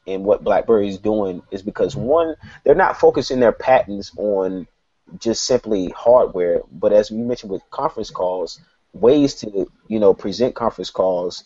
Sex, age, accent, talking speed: male, 30-49, American, 160 wpm